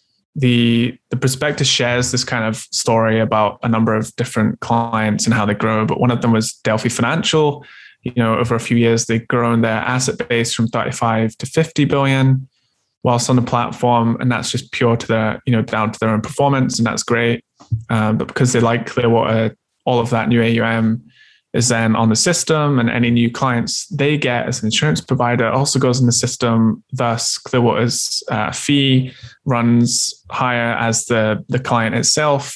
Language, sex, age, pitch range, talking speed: English, male, 20-39, 115-125 Hz, 190 wpm